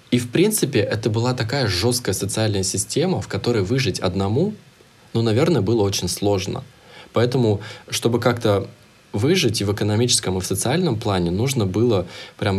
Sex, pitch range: male, 100-120 Hz